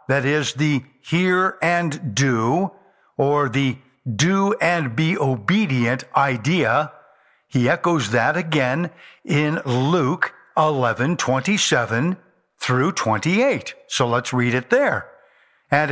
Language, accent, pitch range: English, American, 130-180 Hz